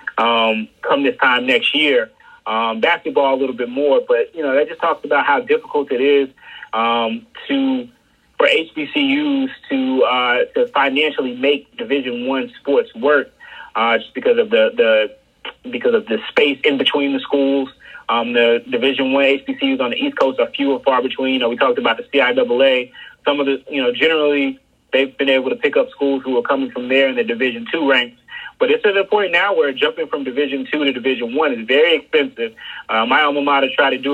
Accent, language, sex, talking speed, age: American, English, male, 205 wpm, 30-49